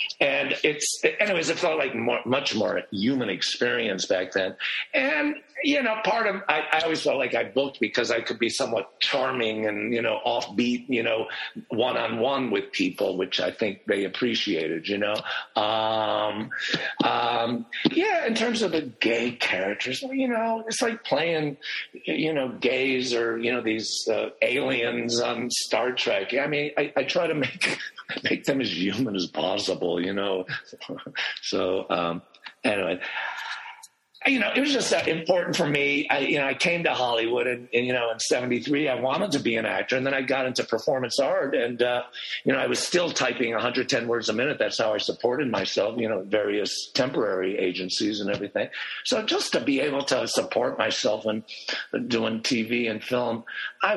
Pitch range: 115-175 Hz